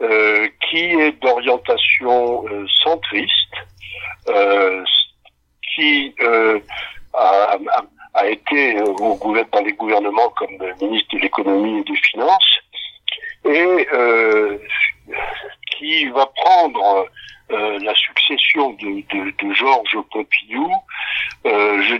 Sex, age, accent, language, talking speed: male, 60-79, French, French, 115 wpm